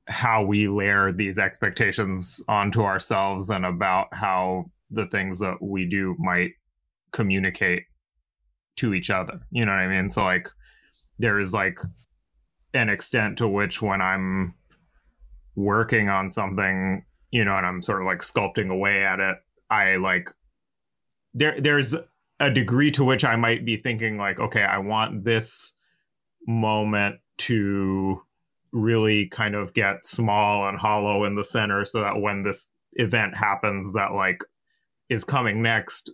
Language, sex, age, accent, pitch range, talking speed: English, male, 20-39, American, 95-115 Hz, 150 wpm